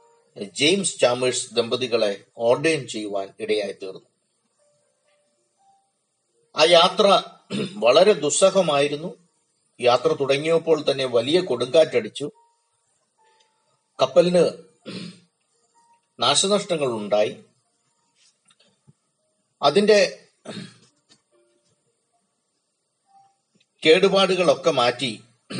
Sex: male